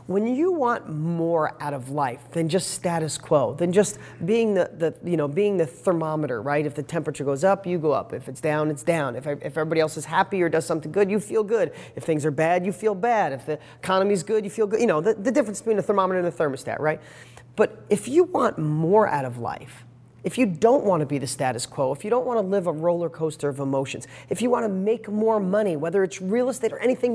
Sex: male